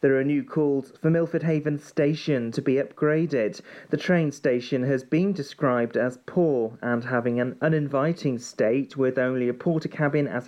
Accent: British